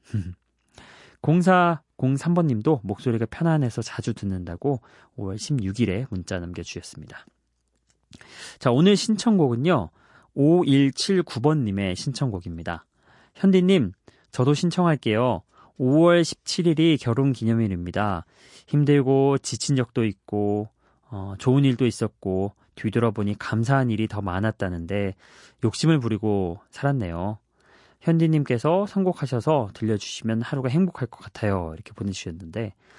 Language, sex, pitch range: Korean, male, 100-140 Hz